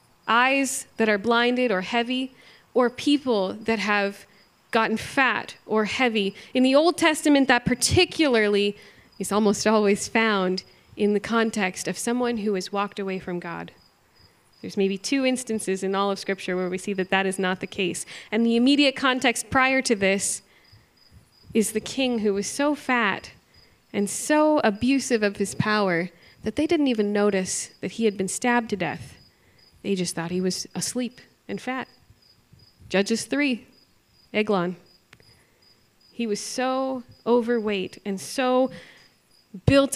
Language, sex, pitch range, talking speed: English, female, 190-240 Hz, 155 wpm